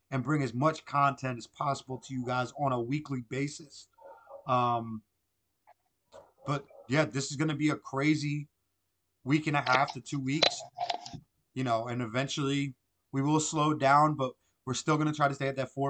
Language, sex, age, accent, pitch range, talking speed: English, male, 30-49, American, 110-150 Hz, 190 wpm